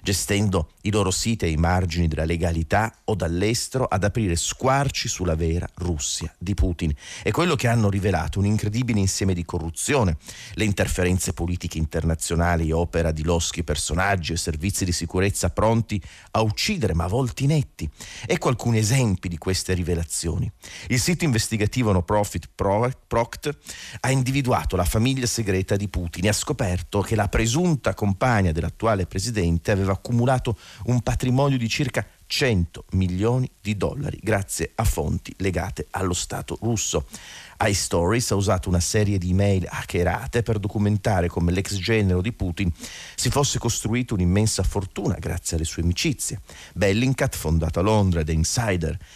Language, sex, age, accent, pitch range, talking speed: Italian, male, 40-59, native, 85-115 Hz, 145 wpm